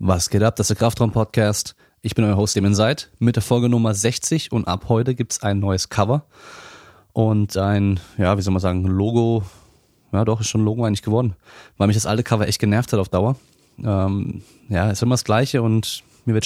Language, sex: German, male